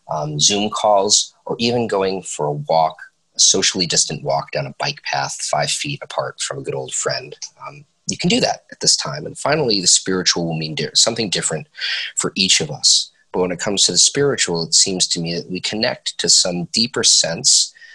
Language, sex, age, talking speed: English, male, 30-49, 210 wpm